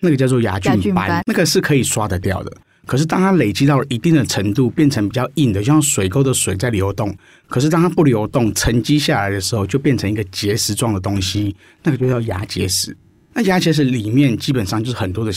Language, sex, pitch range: Chinese, male, 100-140 Hz